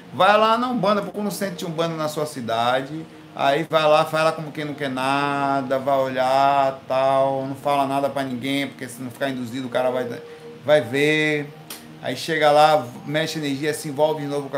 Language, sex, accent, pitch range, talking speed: Portuguese, male, Brazilian, 145-185 Hz, 200 wpm